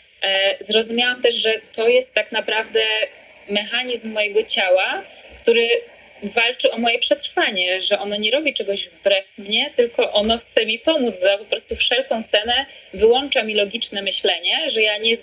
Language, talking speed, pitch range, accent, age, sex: Polish, 155 wpm, 200-265 Hz, native, 20-39, female